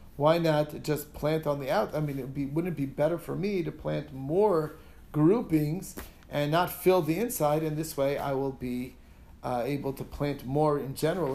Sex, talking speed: male, 210 wpm